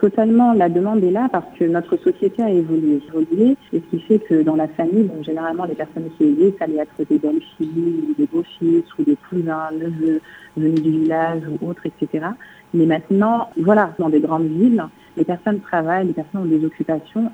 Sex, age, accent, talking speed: female, 40-59, French, 200 wpm